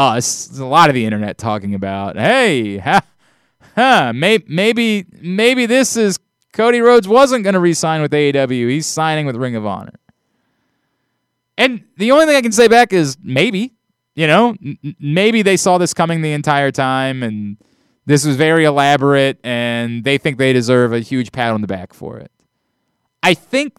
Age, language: 20-39, English